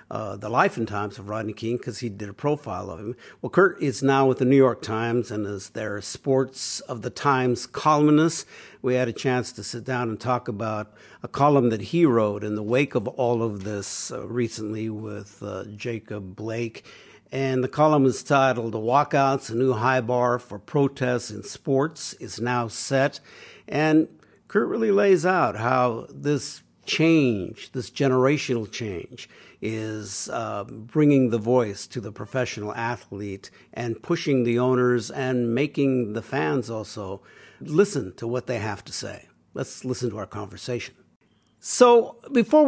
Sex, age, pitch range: male, 60-79, 110-135 Hz